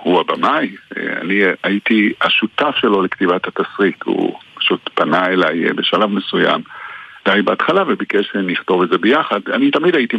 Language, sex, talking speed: Hebrew, male, 135 wpm